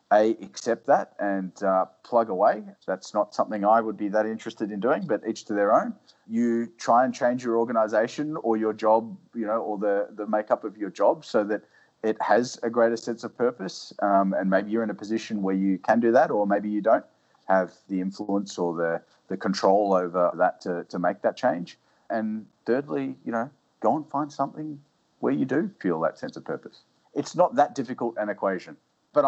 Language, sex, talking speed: English, male, 210 wpm